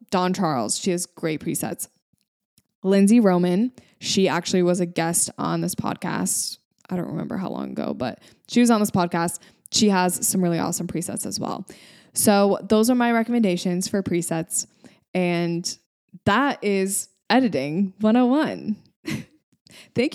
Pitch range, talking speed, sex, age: 175-210 Hz, 145 wpm, female, 20-39